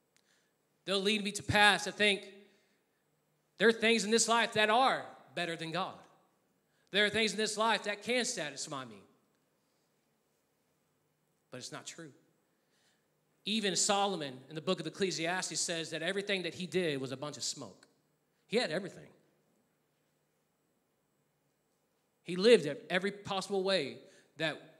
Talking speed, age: 145 wpm, 40-59